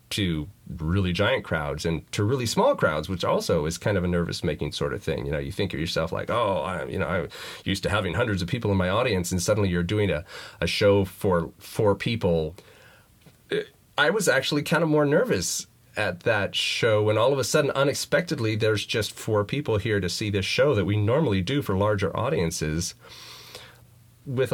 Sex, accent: male, American